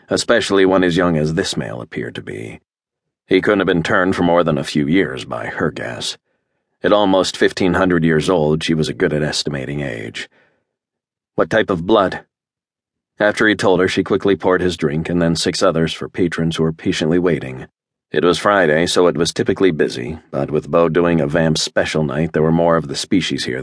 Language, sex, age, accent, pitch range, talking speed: English, male, 40-59, American, 80-95 Hz, 210 wpm